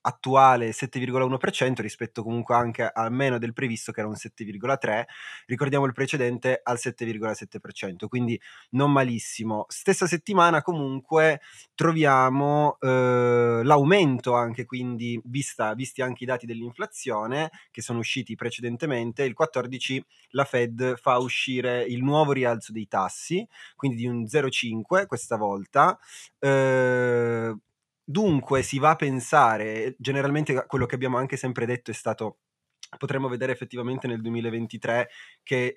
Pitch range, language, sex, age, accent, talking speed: 115-140 Hz, Italian, male, 30-49, native, 125 wpm